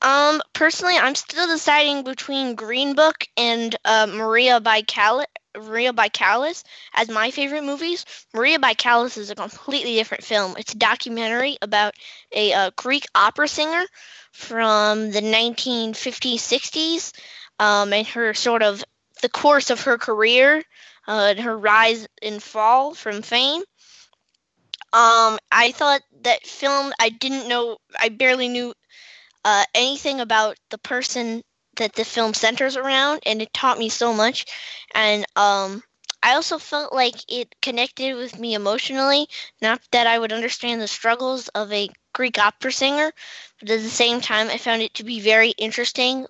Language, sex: English, female